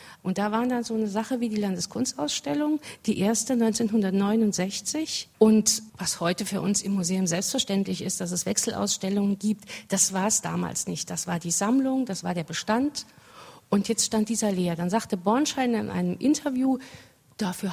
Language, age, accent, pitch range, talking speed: German, 50-69, German, 190-230 Hz, 175 wpm